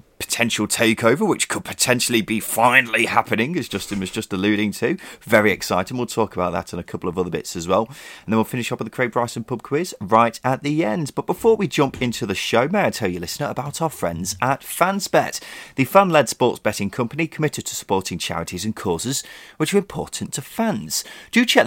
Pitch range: 100-135 Hz